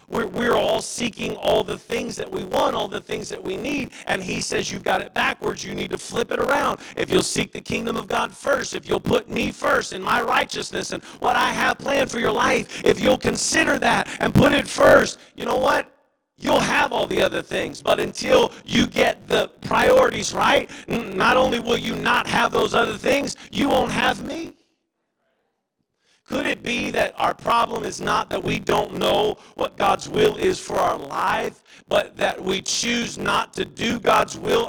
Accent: American